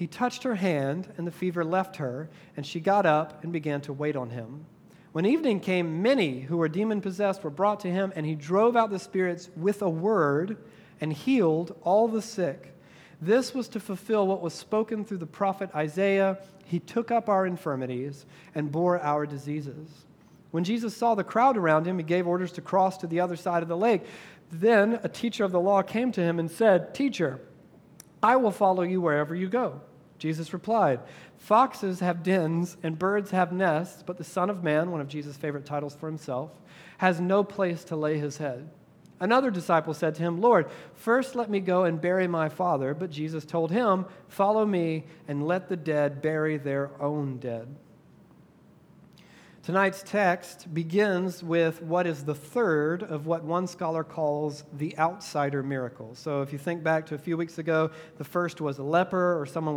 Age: 40-59